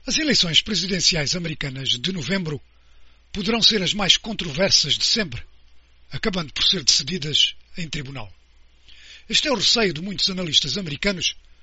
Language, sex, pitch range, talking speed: Portuguese, male, 140-210 Hz, 140 wpm